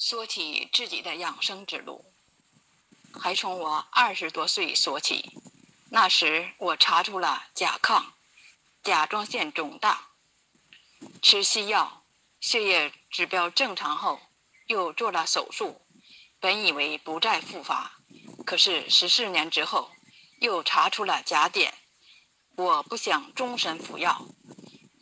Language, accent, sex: Chinese, native, female